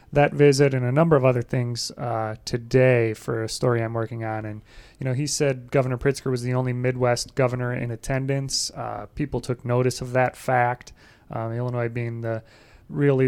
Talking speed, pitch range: 190 wpm, 115-130 Hz